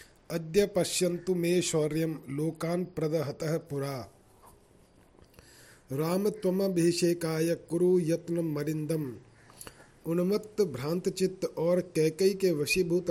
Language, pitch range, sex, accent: Hindi, 150-180 Hz, male, native